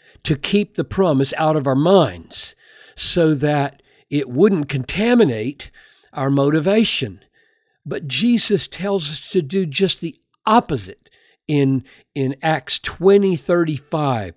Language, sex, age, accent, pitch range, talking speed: English, male, 50-69, American, 130-190 Hz, 125 wpm